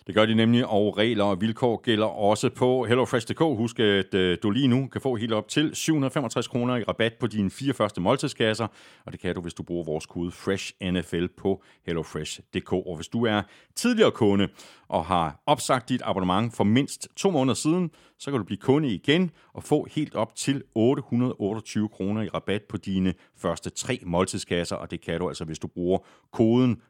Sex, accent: male, native